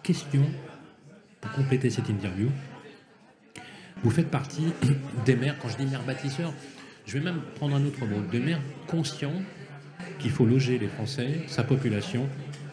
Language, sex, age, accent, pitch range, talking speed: French, male, 40-59, French, 110-145 Hz, 150 wpm